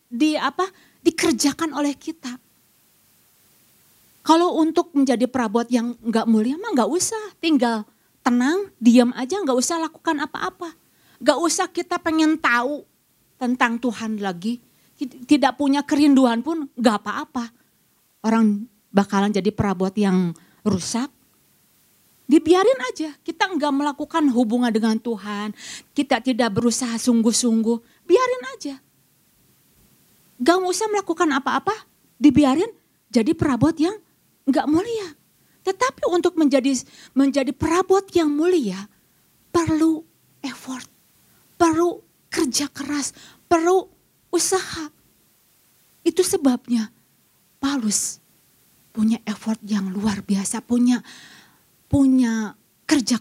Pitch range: 230-325 Hz